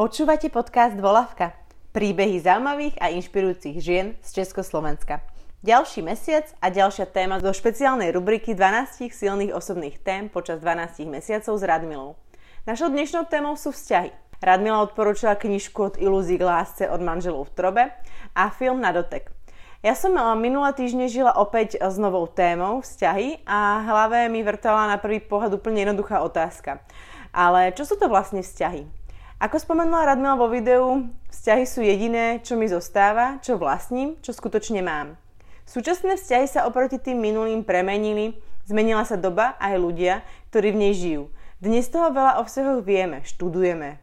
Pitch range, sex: 185-245 Hz, female